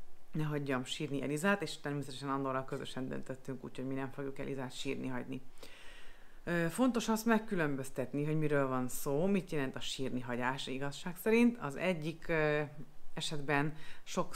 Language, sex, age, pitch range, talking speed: Hungarian, female, 30-49, 130-160 Hz, 140 wpm